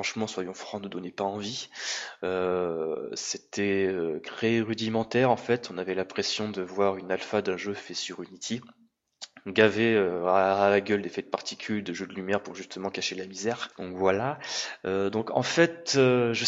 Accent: French